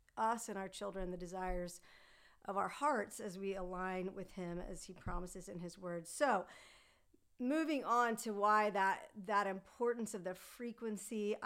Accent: American